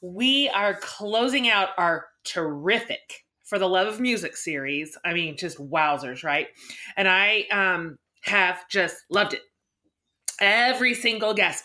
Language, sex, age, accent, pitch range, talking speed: English, female, 30-49, American, 180-245 Hz, 140 wpm